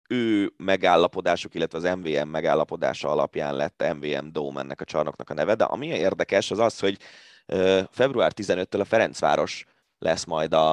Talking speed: 150 wpm